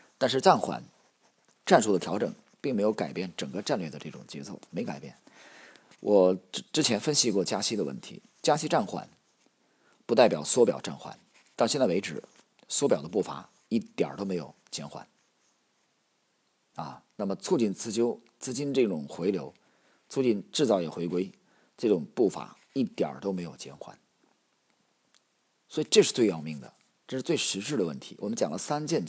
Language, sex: Chinese, male